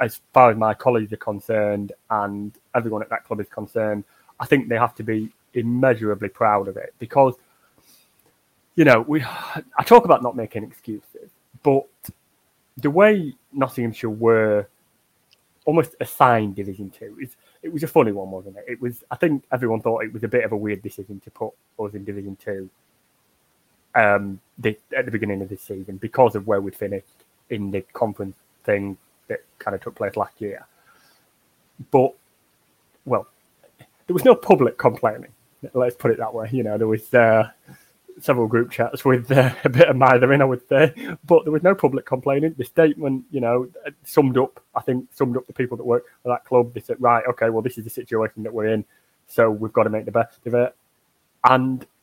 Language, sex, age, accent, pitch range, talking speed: English, male, 20-39, British, 105-130 Hz, 195 wpm